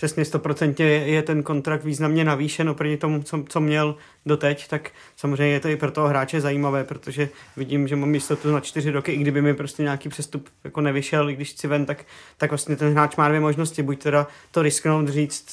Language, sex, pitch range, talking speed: Czech, male, 145-155 Hz, 215 wpm